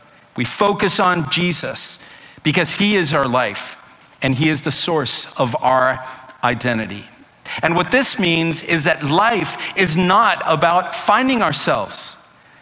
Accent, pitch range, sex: American, 135-180 Hz, male